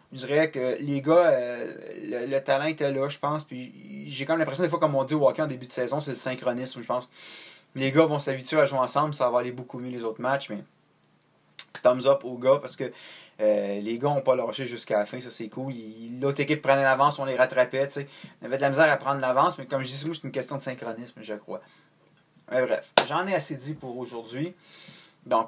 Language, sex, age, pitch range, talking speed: French, male, 20-39, 125-155 Hz, 245 wpm